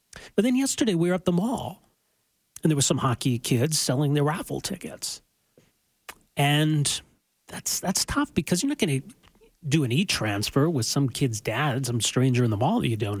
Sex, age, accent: male, 40-59, American